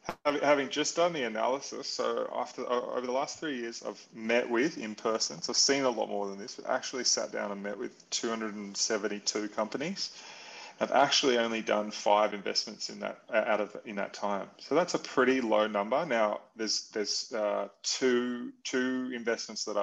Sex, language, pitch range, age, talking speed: male, English, 105-130 Hz, 30-49, 195 wpm